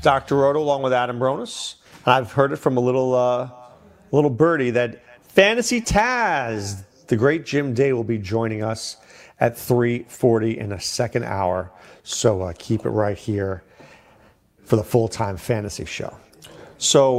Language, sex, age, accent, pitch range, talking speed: English, male, 40-59, American, 115-155 Hz, 155 wpm